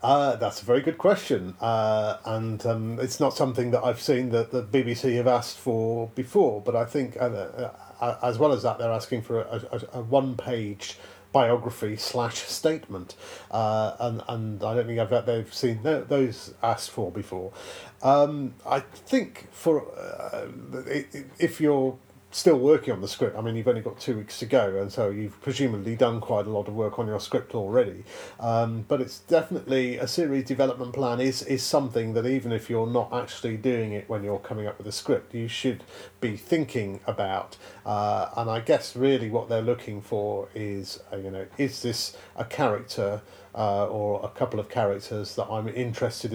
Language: English